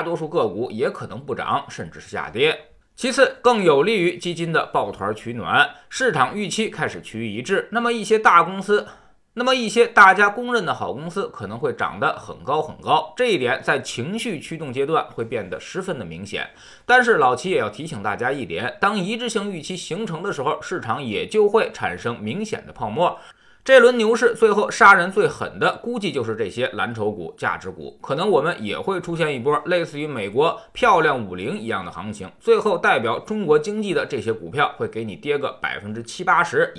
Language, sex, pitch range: Chinese, male, 170-250 Hz